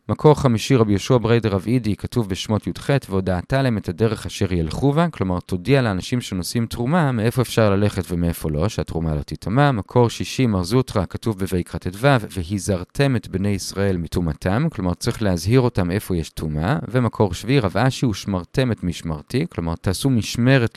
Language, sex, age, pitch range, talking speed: Hebrew, male, 30-49, 90-135 Hz, 175 wpm